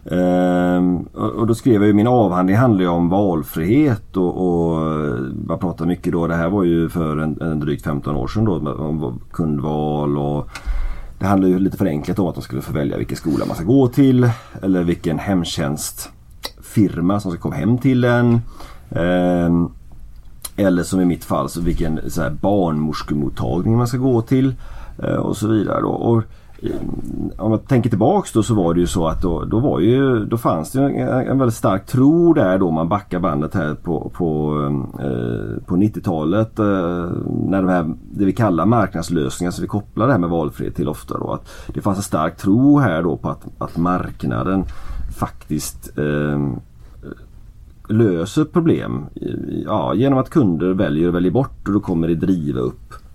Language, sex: Swedish, male